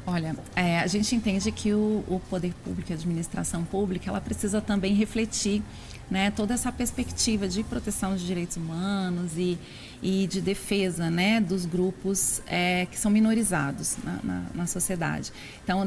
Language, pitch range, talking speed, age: Portuguese, 185-215 Hz, 160 wpm, 40-59